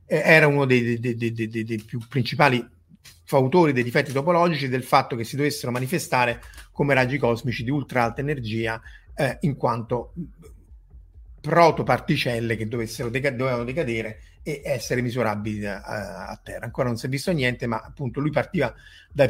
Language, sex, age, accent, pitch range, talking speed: Italian, male, 30-49, native, 120-155 Hz, 160 wpm